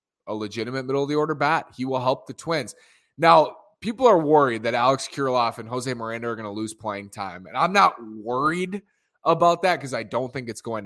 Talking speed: 205 wpm